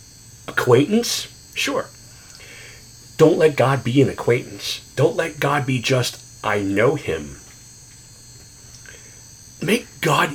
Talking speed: 105 wpm